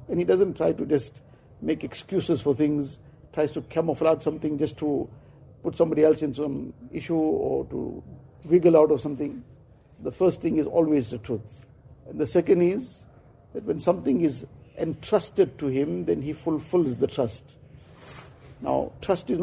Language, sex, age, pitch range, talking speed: English, male, 60-79, 130-165 Hz, 165 wpm